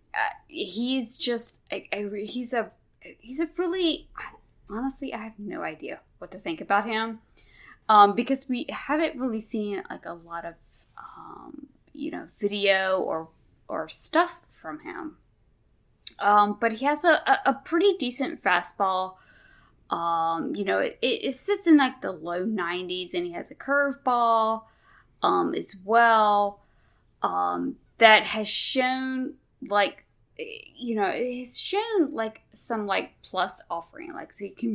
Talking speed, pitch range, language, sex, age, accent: 150 wpm, 185-275 Hz, English, female, 20-39, American